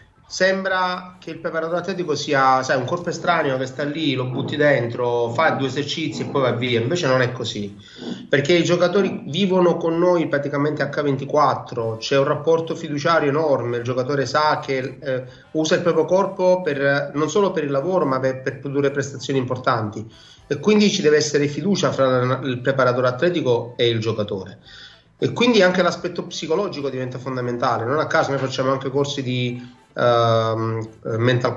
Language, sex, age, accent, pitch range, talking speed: Italian, male, 30-49, native, 125-150 Hz, 170 wpm